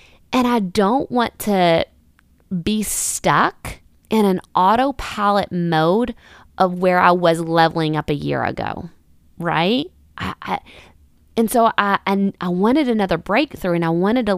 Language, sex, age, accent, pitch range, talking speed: English, female, 20-39, American, 170-220 Hz, 145 wpm